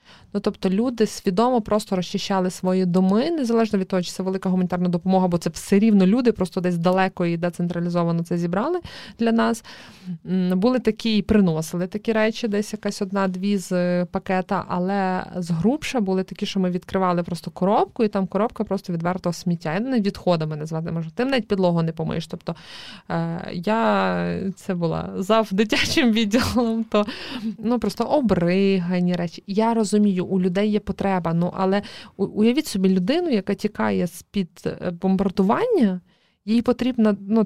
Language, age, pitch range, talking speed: Ukrainian, 20-39, 180-220 Hz, 155 wpm